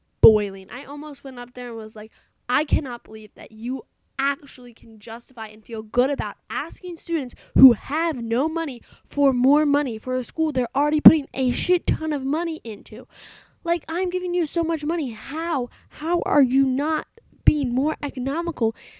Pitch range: 225-315 Hz